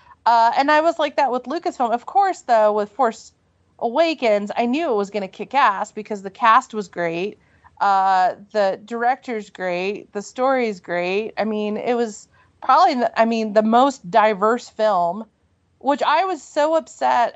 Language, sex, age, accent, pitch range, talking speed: English, female, 30-49, American, 205-260 Hz, 175 wpm